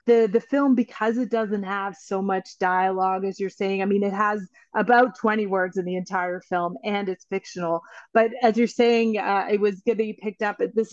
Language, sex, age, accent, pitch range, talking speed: English, female, 30-49, American, 185-215 Hz, 225 wpm